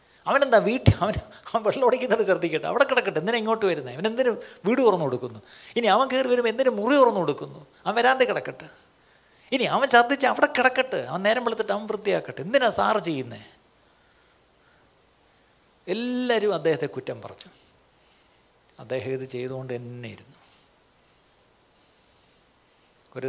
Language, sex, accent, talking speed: Malayalam, male, native, 130 wpm